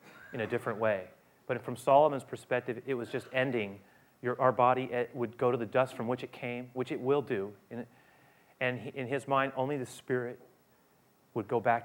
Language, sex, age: English, male, 40-59